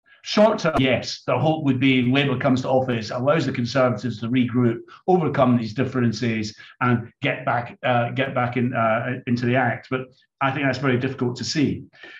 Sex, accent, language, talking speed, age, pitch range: male, British, English, 185 wpm, 50-69, 125-145 Hz